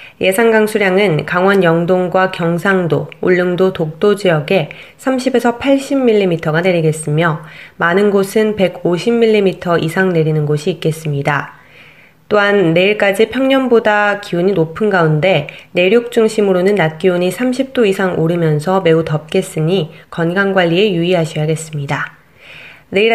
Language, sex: Korean, female